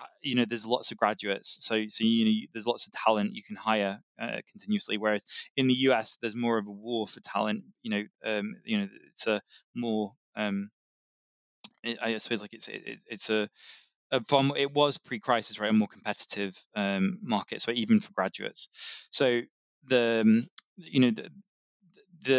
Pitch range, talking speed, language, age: 110-140 Hz, 180 wpm, English, 20-39